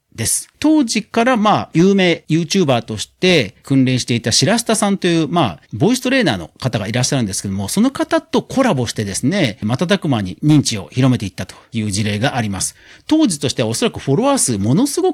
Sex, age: male, 40-59